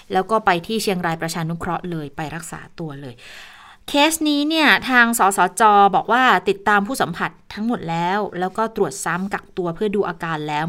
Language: Thai